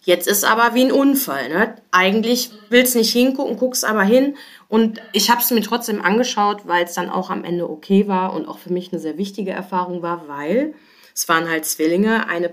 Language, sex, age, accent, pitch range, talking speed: German, female, 20-39, German, 175-220 Hz, 215 wpm